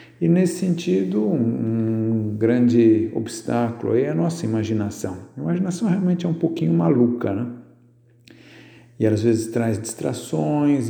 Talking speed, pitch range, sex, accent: 125 wpm, 110-125 Hz, male, Brazilian